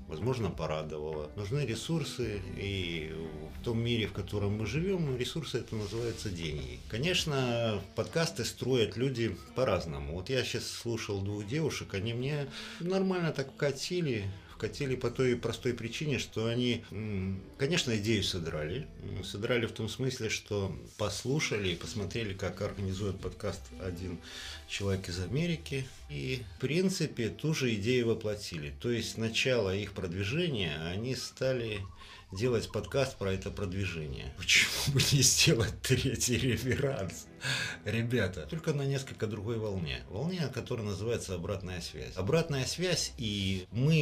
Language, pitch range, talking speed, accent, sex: Russian, 95-130 Hz, 135 wpm, native, male